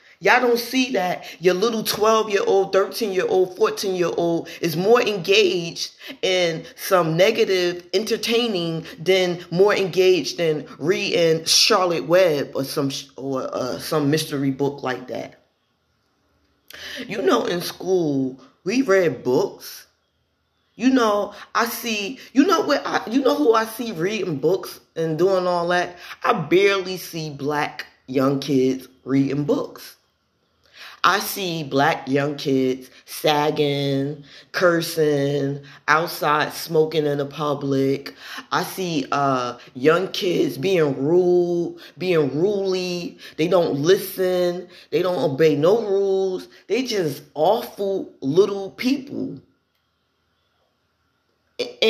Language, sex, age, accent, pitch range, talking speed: English, female, 20-39, American, 150-205 Hz, 115 wpm